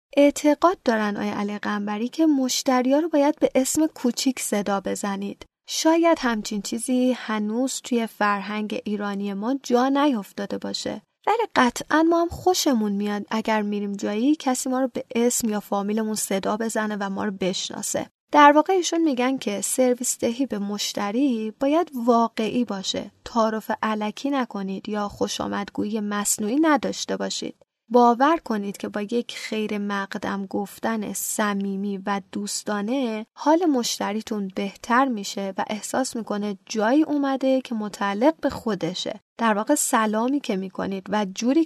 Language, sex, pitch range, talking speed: Persian, female, 210-275 Hz, 135 wpm